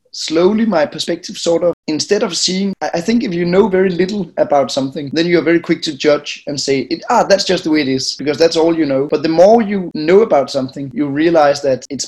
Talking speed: 240 wpm